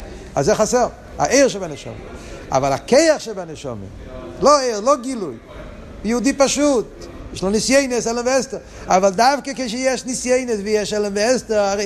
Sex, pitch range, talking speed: male, 155-230 Hz, 130 wpm